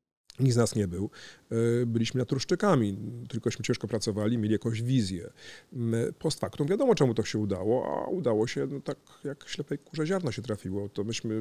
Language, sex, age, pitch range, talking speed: Polish, male, 40-59, 105-125 Hz, 180 wpm